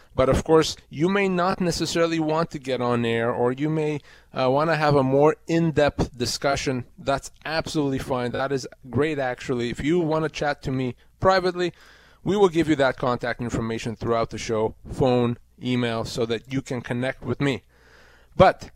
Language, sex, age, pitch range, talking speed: English, male, 30-49, 125-155 Hz, 180 wpm